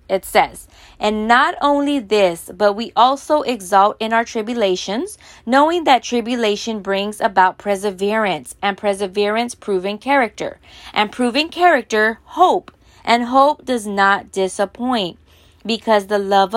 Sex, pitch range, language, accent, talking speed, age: female, 190-230 Hz, English, American, 125 wpm, 20-39